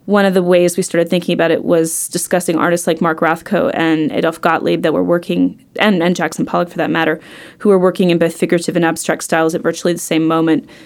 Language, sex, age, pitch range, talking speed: English, female, 20-39, 160-175 Hz, 230 wpm